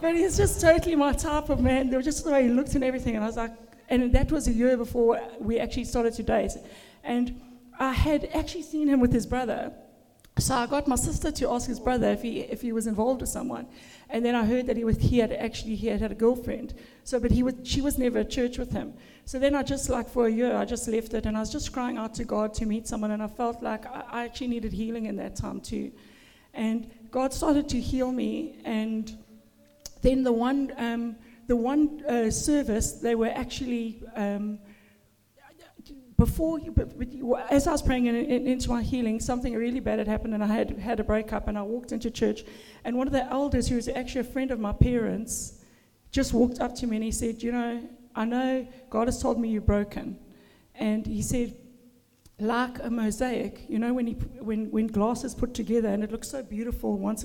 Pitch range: 225-255 Hz